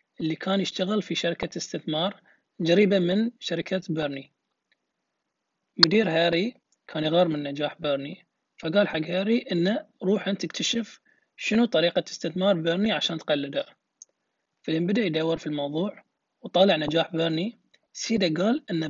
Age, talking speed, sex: 30-49, 125 wpm, male